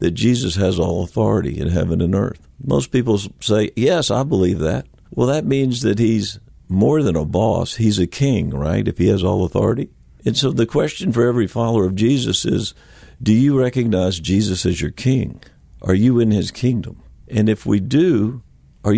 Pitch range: 85-120 Hz